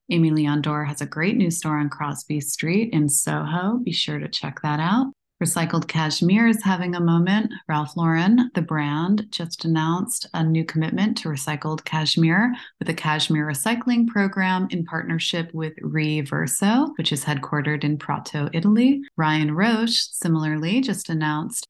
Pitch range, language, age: 155-195 Hz, English, 30-49